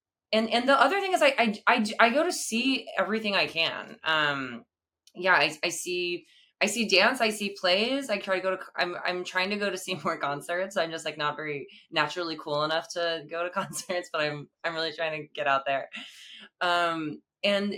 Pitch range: 155-210 Hz